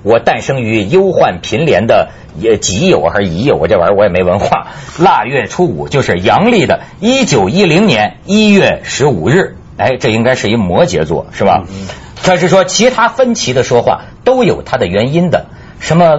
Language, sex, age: Chinese, male, 50-69